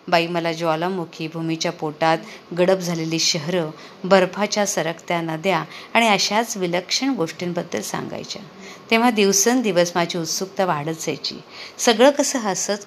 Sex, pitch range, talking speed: female, 175-205 Hz, 115 wpm